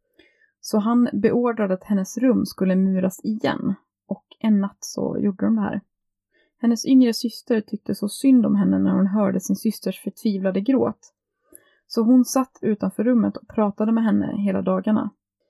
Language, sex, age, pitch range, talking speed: Swedish, female, 20-39, 190-240 Hz, 165 wpm